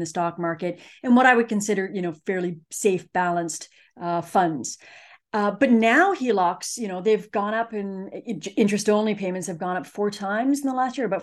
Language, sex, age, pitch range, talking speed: English, female, 30-49, 185-250 Hz, 205 wpm